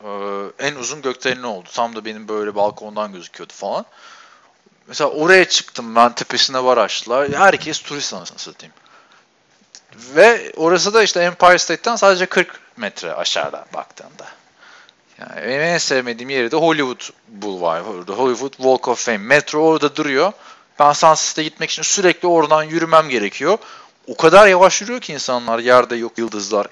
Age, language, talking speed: 40-59, Turkish, 145 wpm